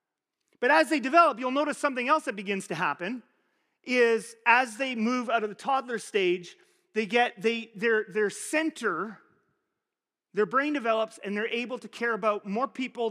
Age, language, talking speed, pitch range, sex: 30-49, English, 170 wpm, 200-270 Hz, male